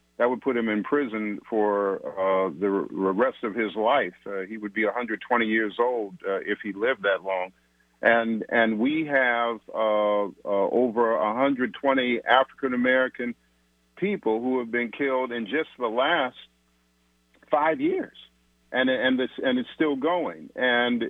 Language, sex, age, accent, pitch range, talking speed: English, male, 50-69, American, 100-130 Hz, 155 wpm